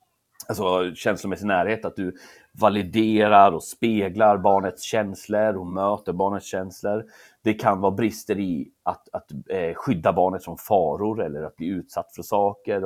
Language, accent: Swedish, native